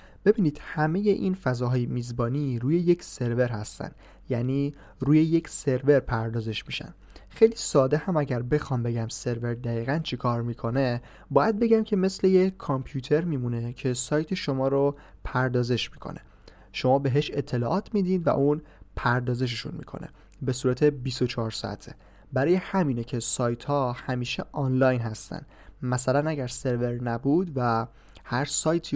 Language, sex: Persian, male